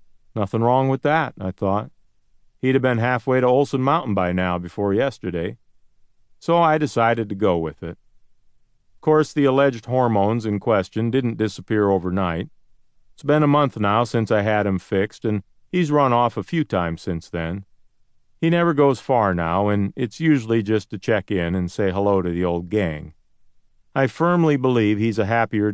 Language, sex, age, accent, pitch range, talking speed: English, male, 50-69, American, 100-125 Hz, 180 wpm